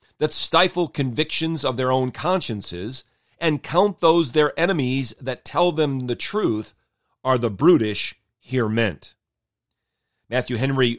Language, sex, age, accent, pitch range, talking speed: English, male, 40-59, American, 115-150 Hz, 130 wpm